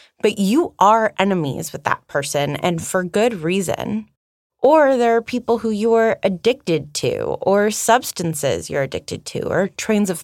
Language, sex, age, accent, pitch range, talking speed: English, female, 20-39, American, 160-215 Hz, 165 wpm